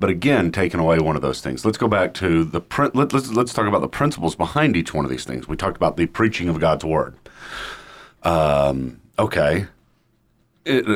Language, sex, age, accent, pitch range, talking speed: English, male, 40-59, American, 80-105 Hz, 195 wpm